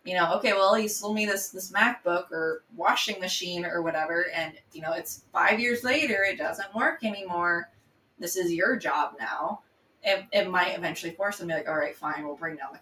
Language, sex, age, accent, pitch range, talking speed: English, female, 20-39, American, 165-215 Hz, 220 wpm